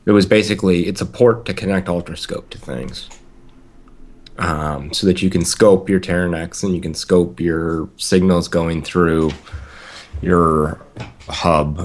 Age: 30-49